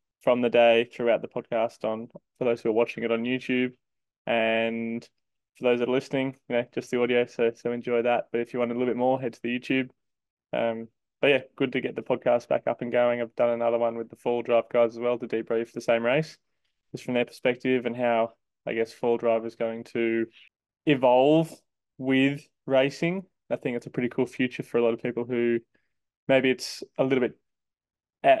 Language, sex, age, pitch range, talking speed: English, male, 20-39, 120-130 Hz, 220 wpm